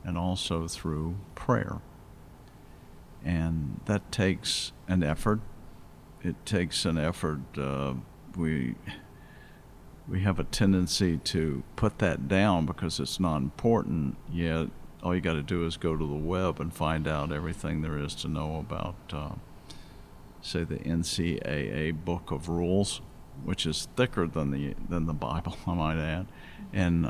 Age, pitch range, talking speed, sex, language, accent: 50-69, 80-95 Hz, 145 wpm, male, English, American